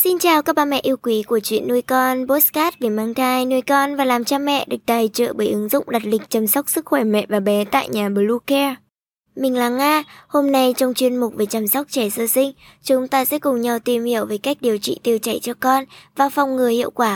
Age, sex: 20-39, male